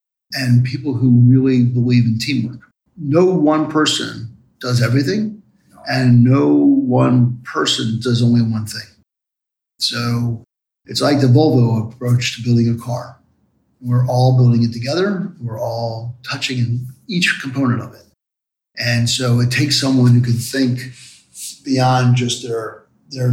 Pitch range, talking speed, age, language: 120-140 Hz, 140 wpm, 50-69, English